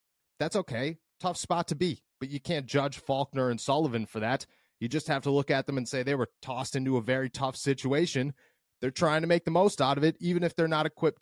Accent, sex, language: American, male, English